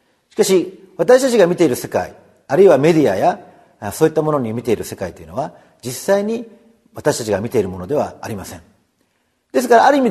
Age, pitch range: 40-59, 125-200 Hz